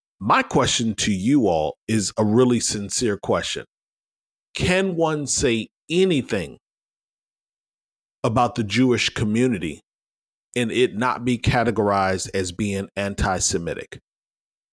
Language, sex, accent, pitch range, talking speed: English, male, American, 110-145 Hz, 105 wpm